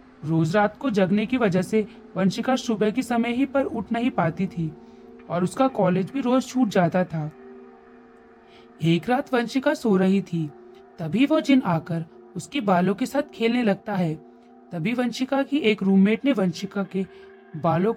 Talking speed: 55 wpm